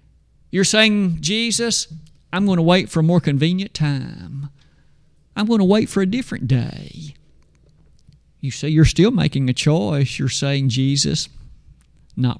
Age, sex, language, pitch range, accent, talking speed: 50-69, male, English, 140-190 Hz, American, 150 wpm